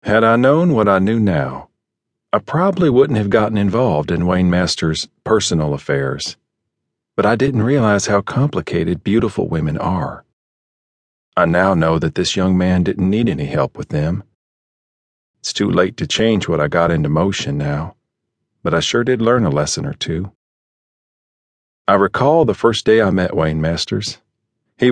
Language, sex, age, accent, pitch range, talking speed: English, male, 40-59, American, 85-115 Hz, 170 wpm